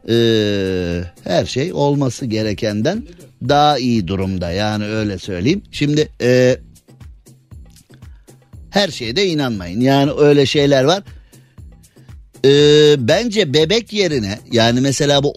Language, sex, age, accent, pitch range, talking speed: Turkish, male, 50-69, native, 105-140 Hz, 100 wpm